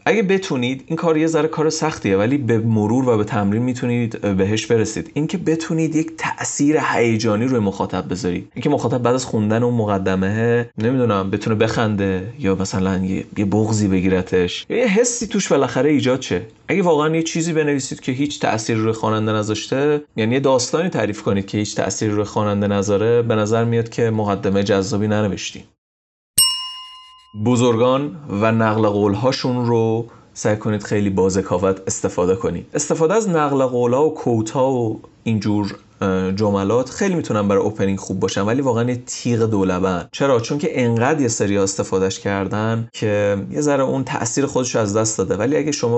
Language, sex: Persian, male